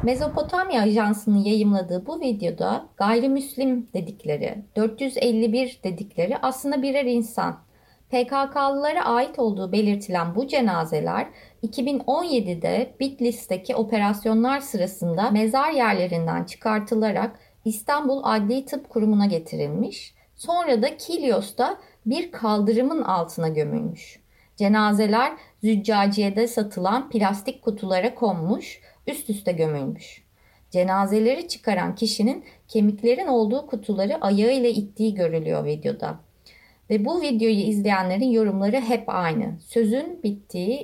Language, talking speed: Turkish, 95 wpm